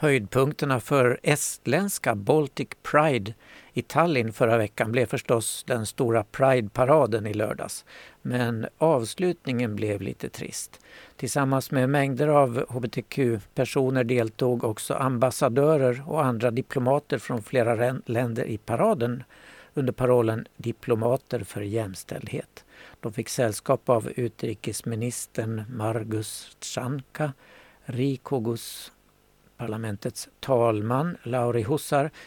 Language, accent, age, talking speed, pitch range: Swedish, native, 60-79, 100 wpm, 115-140 Hz